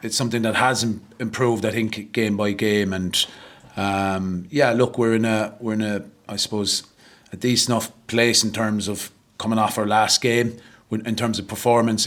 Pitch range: 105-130 Hz